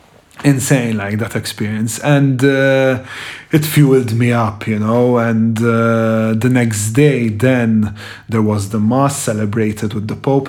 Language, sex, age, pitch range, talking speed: English, male, 30-49, 110-130 Hz, 150 wpm